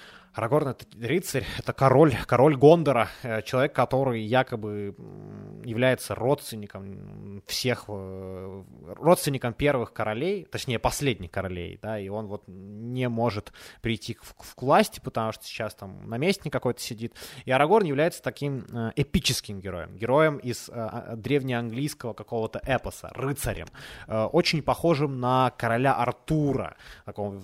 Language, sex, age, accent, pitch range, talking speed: Ukrainian, male, 20-39, native, 105-135 Hz, 120 wpm